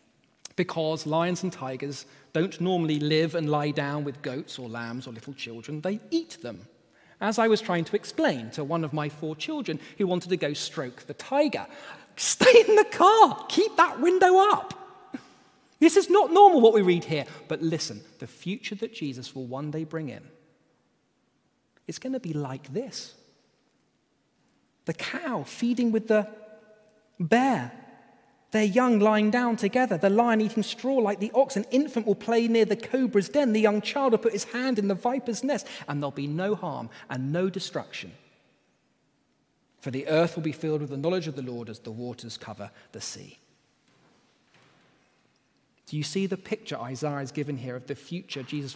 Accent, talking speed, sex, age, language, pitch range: British, 180 wpm, male, 30-49, English, 145-225 Hz